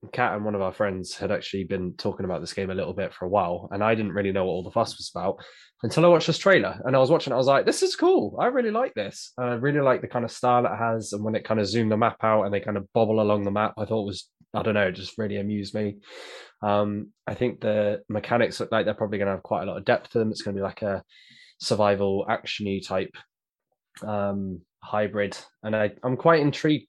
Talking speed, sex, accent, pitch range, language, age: 275 wpm, male, British, 100-120 Hz, English, 20-39